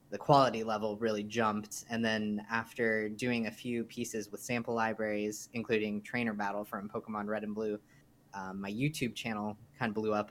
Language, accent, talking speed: English, American, 180 wpm